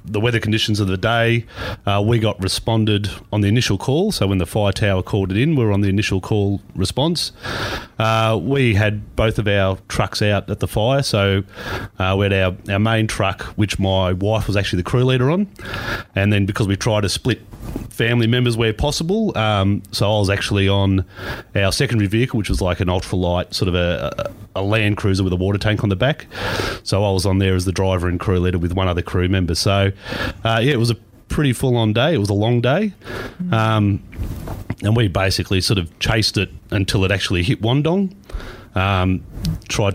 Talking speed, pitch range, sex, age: 210 wpm, 95-115 Hz, male, 30-49